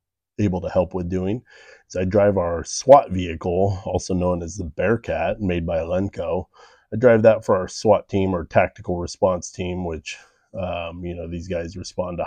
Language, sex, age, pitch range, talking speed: English, male, 30-49, 85-95 Hz, 190 wpm